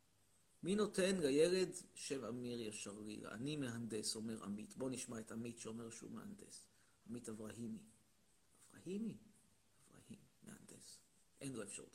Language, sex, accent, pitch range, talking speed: Hebrew, male, native, 140-210 Hz, 130 wpm